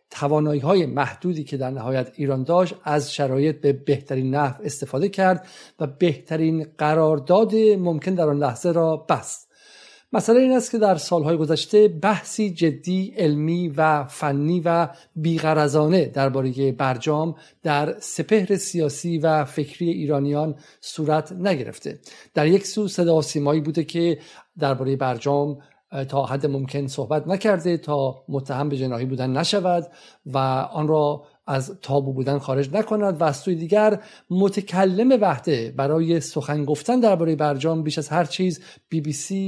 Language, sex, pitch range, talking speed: Persian, male, 145-180 Hz, 140 wpm